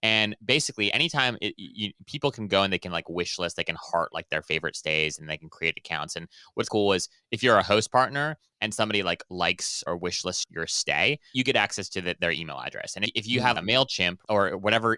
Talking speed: 230 wpm